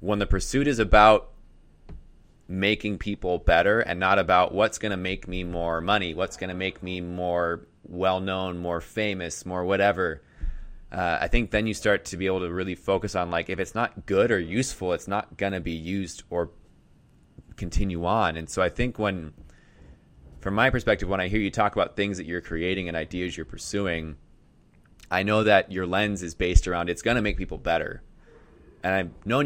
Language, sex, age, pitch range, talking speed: English, male, 20-39, 85-100 Hz, 190 wpm